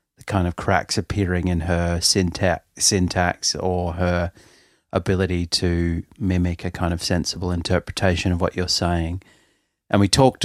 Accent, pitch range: Australian, 90-100 Hz